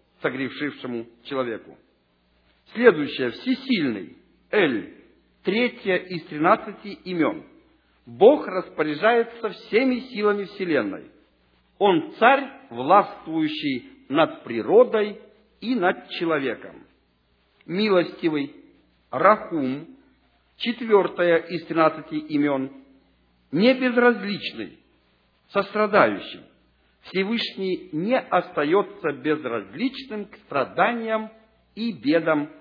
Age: 50-69